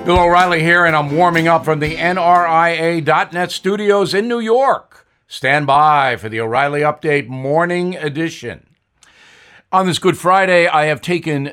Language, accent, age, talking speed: English, American, 50-69, 150 wpm